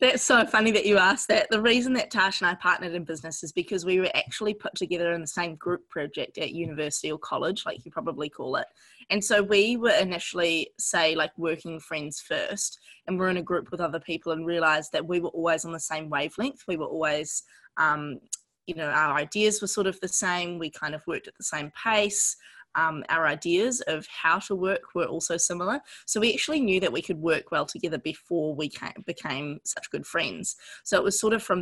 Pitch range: 160-205 Hz